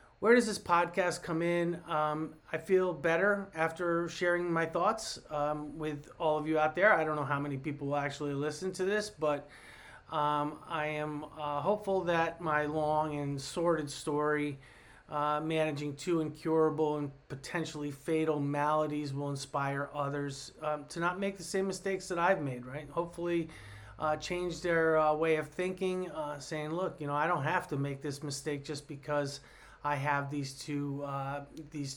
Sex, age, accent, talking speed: male, 30-49, American, 175 wpm